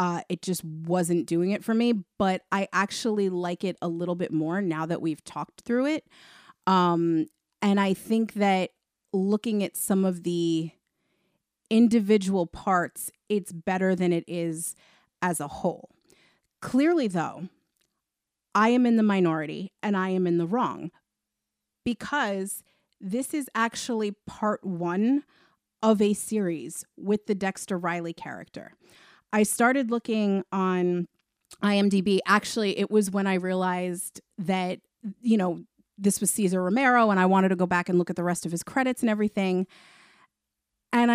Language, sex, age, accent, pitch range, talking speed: English, female, 30-49, American, 175-215 Hz, 155 wpm